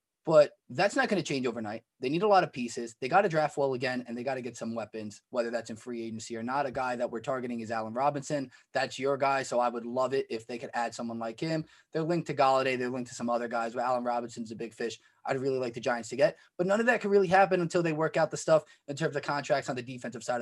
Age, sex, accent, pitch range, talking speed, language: 20-39, male, American, 120-160 Hz, 290 wpm, English